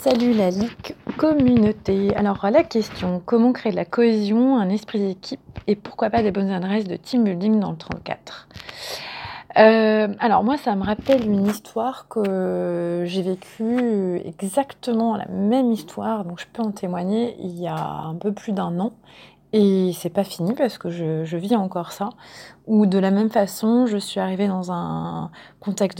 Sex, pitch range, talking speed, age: female, 185-225 Hz, 180 wpm, 30-49